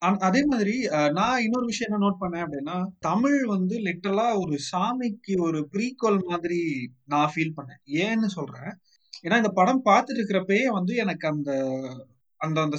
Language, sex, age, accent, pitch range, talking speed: Tamil, male, 30-49, native, 145-200 Hz, 145 wpm